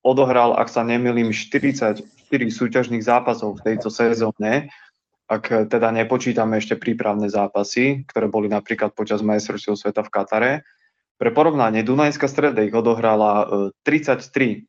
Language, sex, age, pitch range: Slovak, male, 20-39, 110-130 Hz